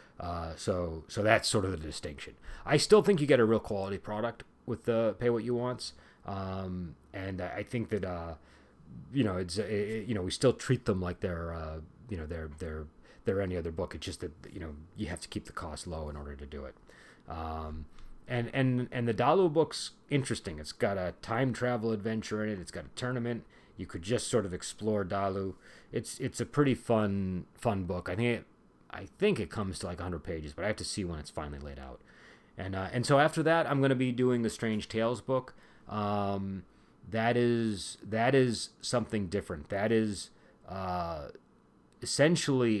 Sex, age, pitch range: male, 30-49, 85-120 Hz